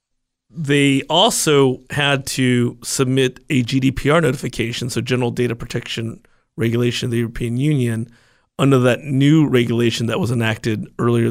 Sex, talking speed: male, 135 wpm